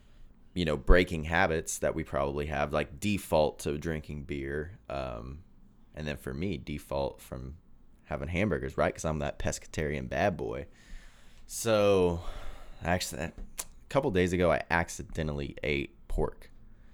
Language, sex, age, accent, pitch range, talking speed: English, male, 20-39, American, 75-100 Hz, 140 wpm